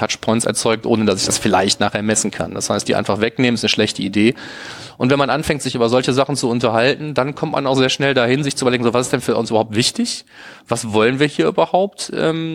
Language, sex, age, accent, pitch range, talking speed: German, male, 30-49, German, 110-135 Hz, 255 wpm